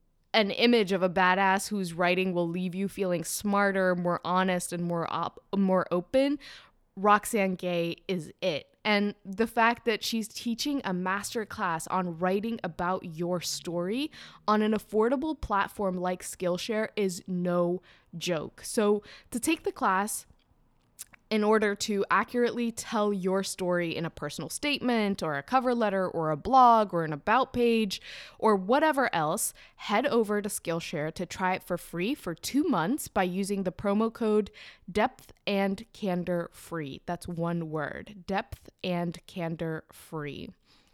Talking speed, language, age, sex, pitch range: 150 wpm, English, 10-29, female, 175-215 Hz